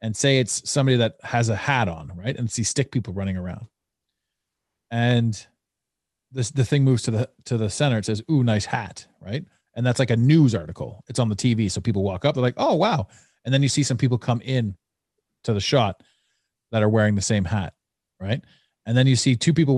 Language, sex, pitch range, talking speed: English, male, 105-135 Hz, 225 wpm